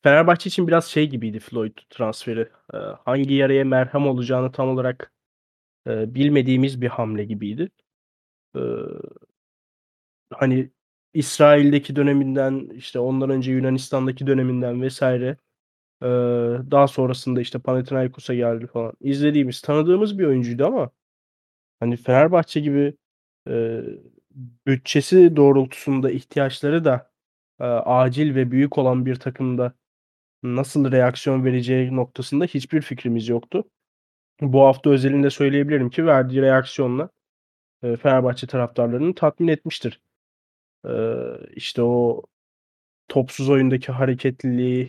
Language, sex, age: Turkish, male, 30-49